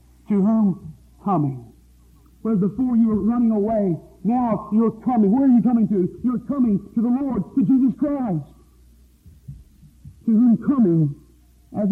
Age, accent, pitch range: 50-69, American, 150-225 Hz